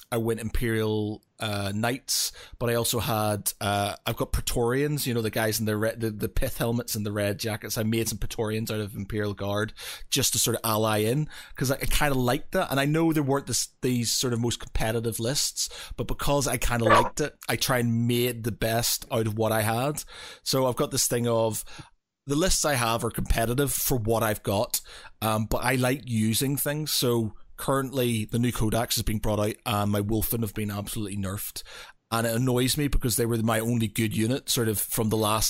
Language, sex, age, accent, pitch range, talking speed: English, male, 30-49, British, 110-130 Hz, 225 wpm